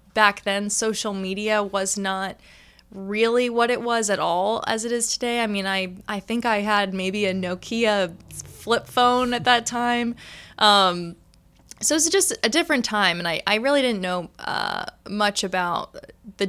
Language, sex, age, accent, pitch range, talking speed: English, female, 20-39, American, 195-235 Hz, 180 wpm